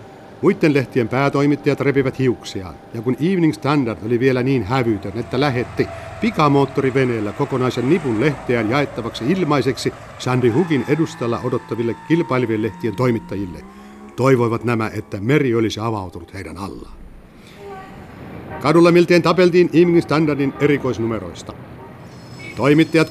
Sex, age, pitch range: male, 60-79, 110-145 Hz